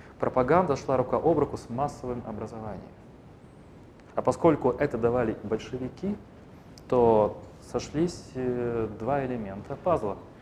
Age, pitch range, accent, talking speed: 30-49, 110-140 Hz, native, 105 wpm